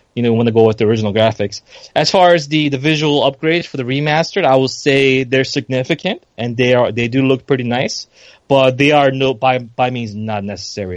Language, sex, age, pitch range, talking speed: English, male, 20-39, 110-135 Hz, 225 wpm